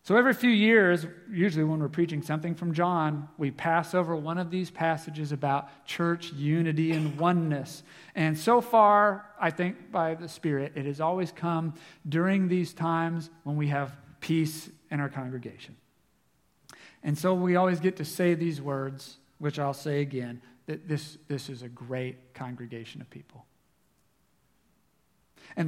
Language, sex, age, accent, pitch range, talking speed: English, male, 40-59, American, 140-180 Hz, 160 wpm